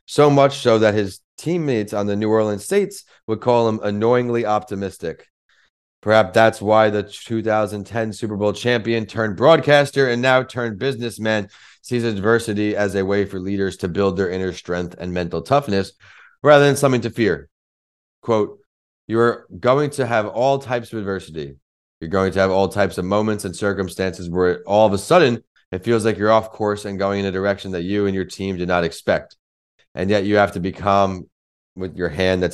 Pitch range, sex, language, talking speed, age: 95-115 Hz, male, English, 190 wpm, 30-49